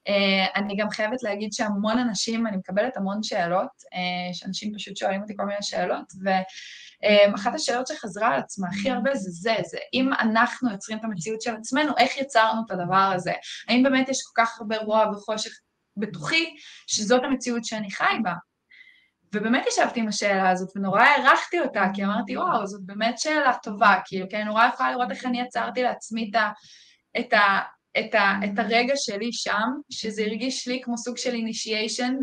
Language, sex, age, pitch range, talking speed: Hebrew, female, 20-39, 210-255 Hz, 180 wpm